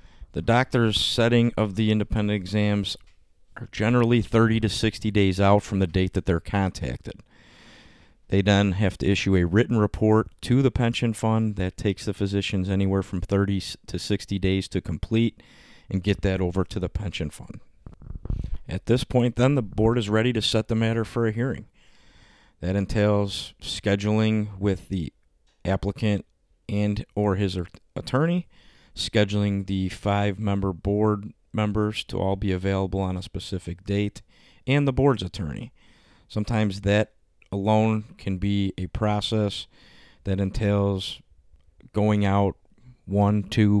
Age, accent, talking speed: 40-59, American, 145 wpm